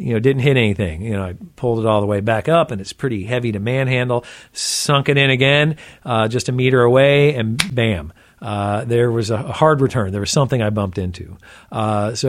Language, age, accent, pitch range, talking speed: English, 50-69, American, 110-135 Hz, 225 wpm